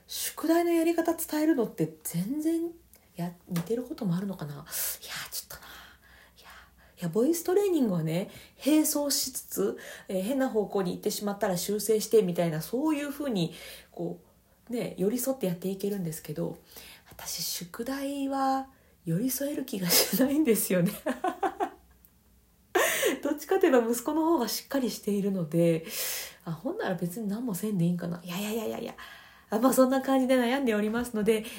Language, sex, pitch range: Japanese, female, 175-260 Hz